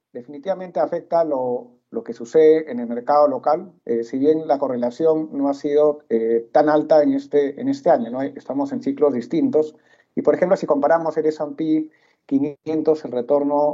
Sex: male